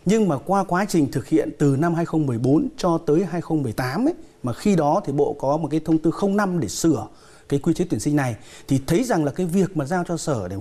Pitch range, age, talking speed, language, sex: 145-195 Hz, 30-49, 250 wpm, Vietnamese, male